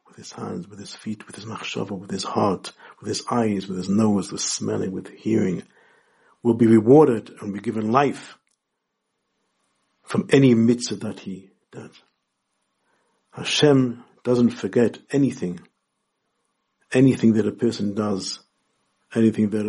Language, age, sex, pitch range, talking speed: English, 60-79, male, 105-145 Hz, 135 wpm